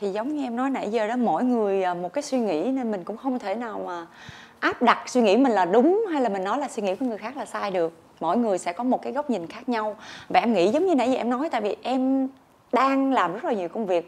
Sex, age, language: female, 20-39, Vietnamese